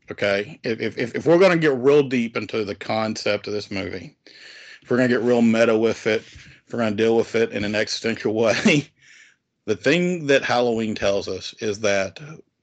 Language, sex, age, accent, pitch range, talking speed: English, male, 40-59, American, 105-130 Hz, 210 wpm